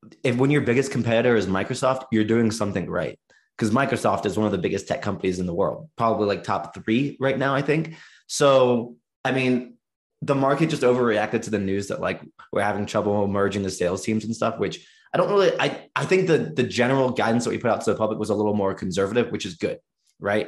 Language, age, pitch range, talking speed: English, 20-39, 105-125 Hz, 230 wpm